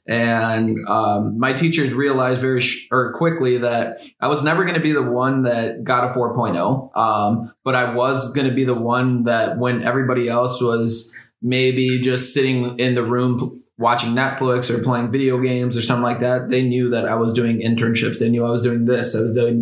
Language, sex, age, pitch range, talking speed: English, male, 20-39, 120-130 Hz, 210 wpm